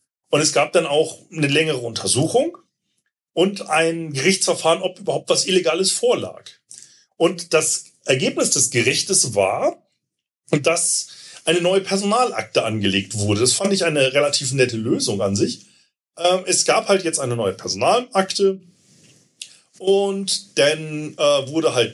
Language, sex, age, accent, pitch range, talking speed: German, male, 40-59, German, 135-195 Hz, 130 wpm